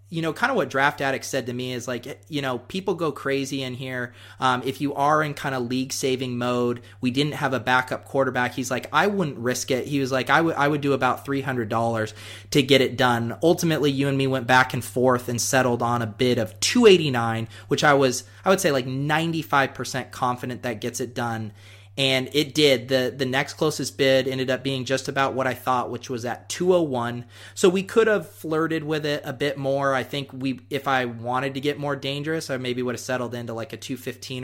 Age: 30-49